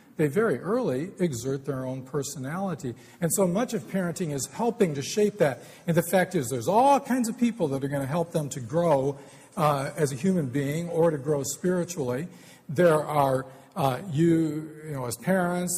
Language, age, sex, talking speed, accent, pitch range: English, 50-69, male, 195 wpm, American, 130-180 Hz